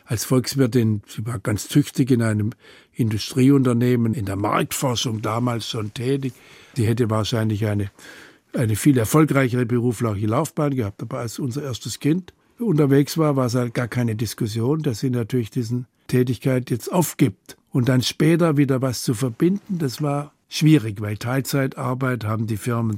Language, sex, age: German, male, 60-79